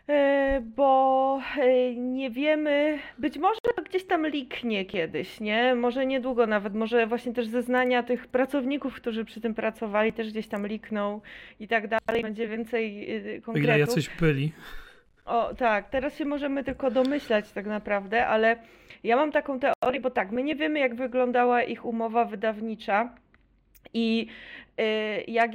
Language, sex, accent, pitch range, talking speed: Polish, female, native, 230-275 Hz, 145 wpm